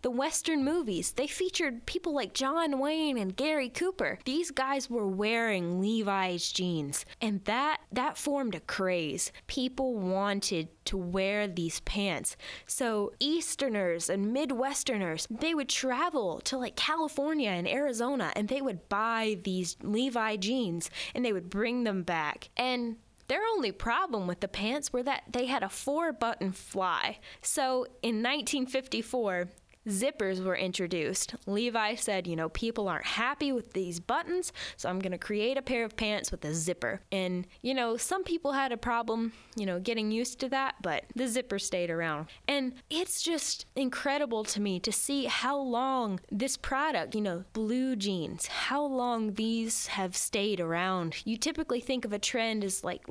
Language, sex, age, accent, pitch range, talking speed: English, female, 10-29, American, 195-270 Hz, 165 wpm